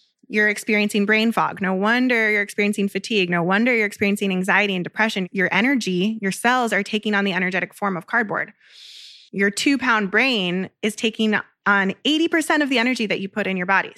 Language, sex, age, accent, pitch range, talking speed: English, female, 20-39, American, 185-220 Hz, 195 wpm